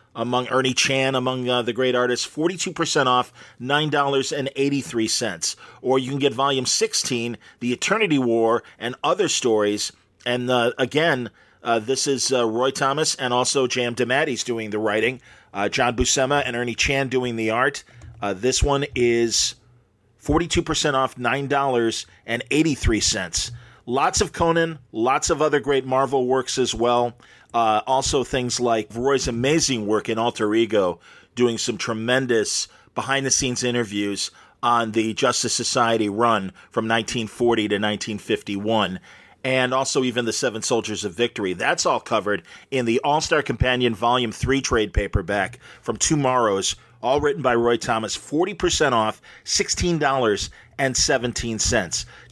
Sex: male